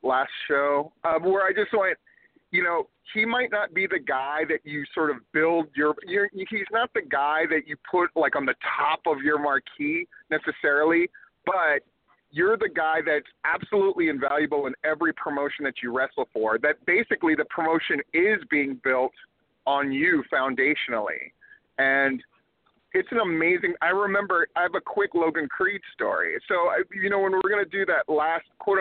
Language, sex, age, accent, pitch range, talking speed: English, male, 30-49, American, 155-225 Hz, 180 wpm